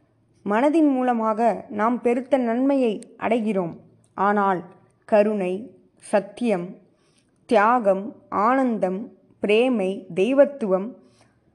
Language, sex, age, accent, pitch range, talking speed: Tamil, female, 20-39, native, 190-260 Hz, 70 wpm